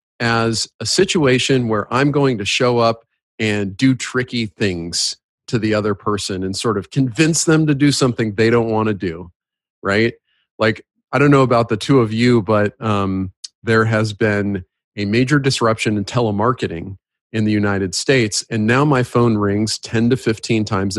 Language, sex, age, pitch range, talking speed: English, male, 40-59, 100-130 Hz, 180 wpm